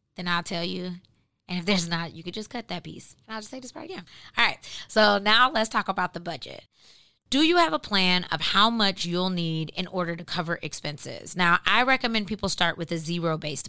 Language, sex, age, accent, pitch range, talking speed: English, female, 20-39, American, 165-205 Hz, 230 wpm